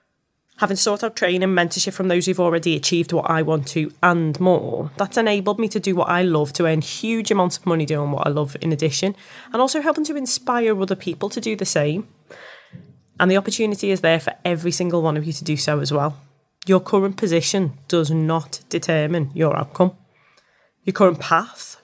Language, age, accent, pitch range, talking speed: English, 20-39, British, 160-190 Hz, 205 wpm